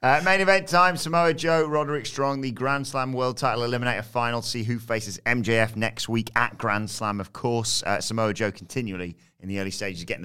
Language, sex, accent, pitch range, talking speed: English, male, British, 95-125 Hz, 210 wpm